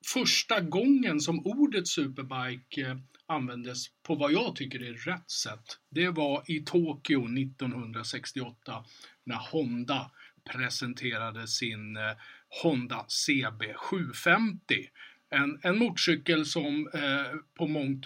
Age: 50-69